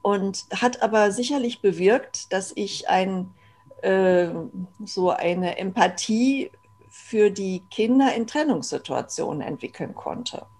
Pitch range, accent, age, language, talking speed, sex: 175-235 Hz, German, 50-69, German, 100 wpm, female